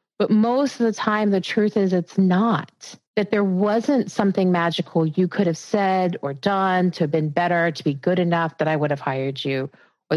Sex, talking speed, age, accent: female, 210 wpm, 30-49, American